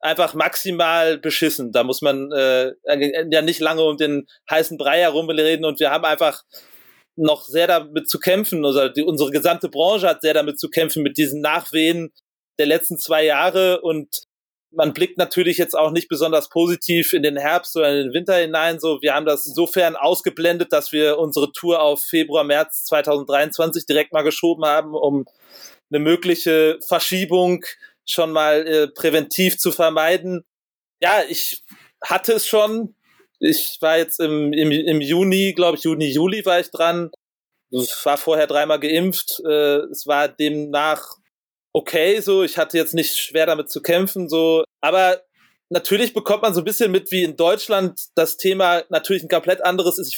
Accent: German